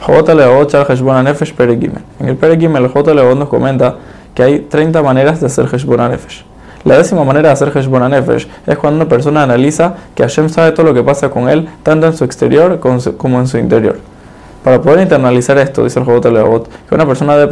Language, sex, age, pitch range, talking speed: Spanish, male, 20-39, 130-155 Hz, 180 wpm